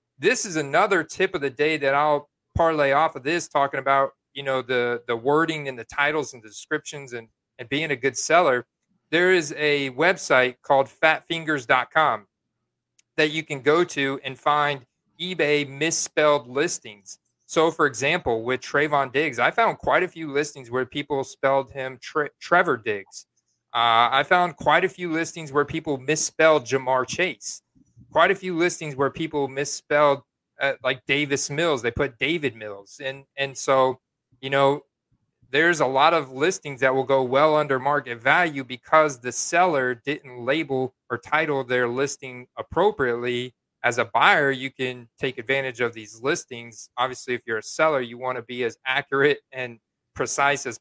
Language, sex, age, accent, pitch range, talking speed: English, male, 30-49, American, 130-150 Hz, 170 wpm